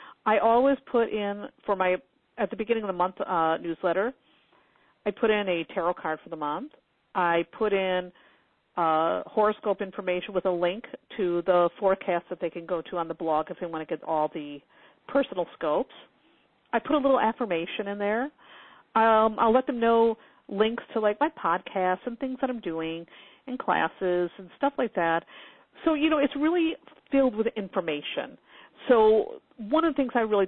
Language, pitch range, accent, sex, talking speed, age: English, 180-255 Hz, American, female, 185 wpm, 50-69